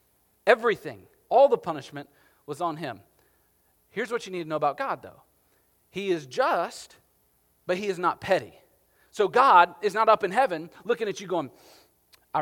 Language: English